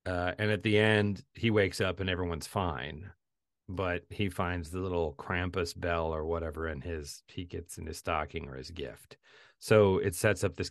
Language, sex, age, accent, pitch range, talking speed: English, male, 40-59, American, 90-115 Hz, 195 wpm